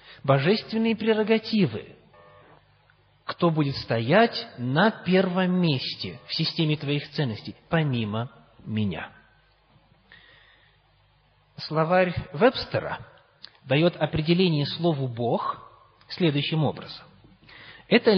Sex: male